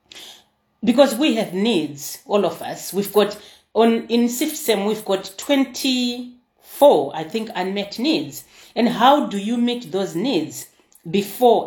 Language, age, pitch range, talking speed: English, 30-49, 185-240 Hz, 140 wpm